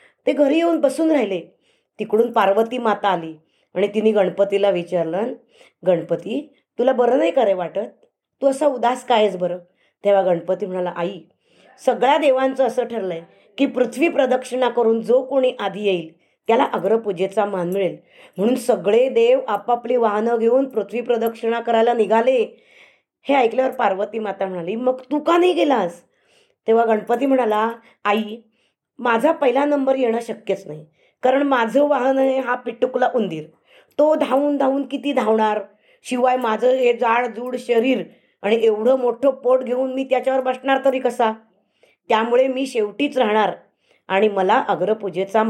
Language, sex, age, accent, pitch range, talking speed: Marathi, female, 20-39, native, 205-265 Hz, 140 wpm